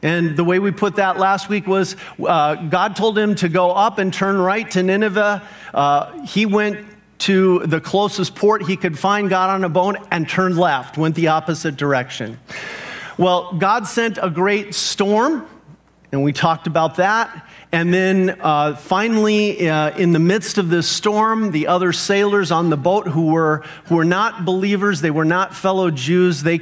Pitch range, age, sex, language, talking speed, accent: 150-190 Hz, 40-59, male, English, 185 wpm, American